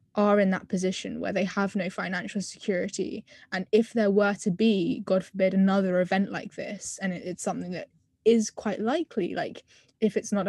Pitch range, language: 190-220 Hz, English